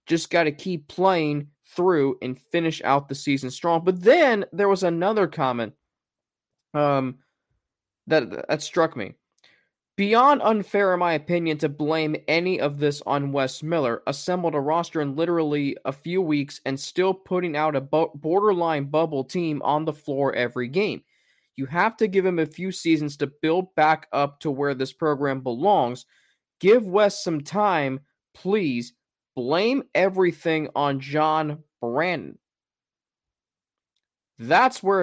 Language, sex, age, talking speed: English, male, 20-39, 145 wpm